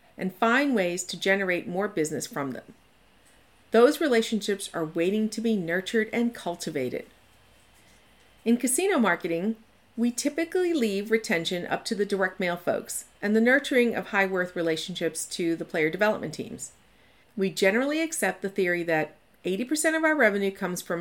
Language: English